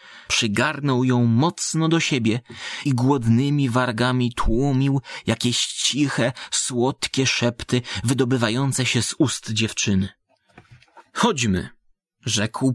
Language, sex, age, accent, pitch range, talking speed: Polish, male, 30-49, native, 110-140 Hz, 95 wpm